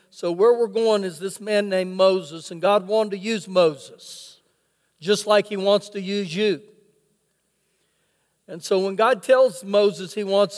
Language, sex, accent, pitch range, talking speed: English, male, American, 195-240 Hz, 170 wpm